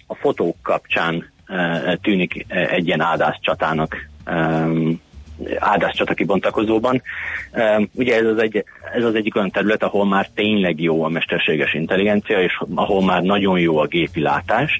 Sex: male